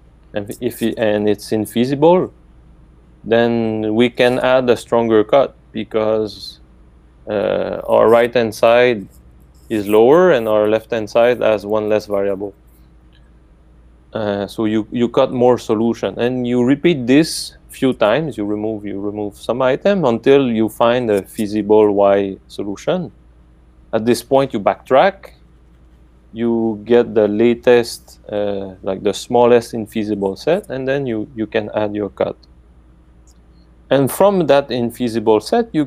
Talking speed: 135 wpm